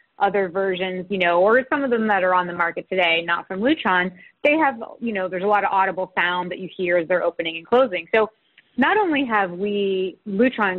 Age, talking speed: 30-49, 230 wpm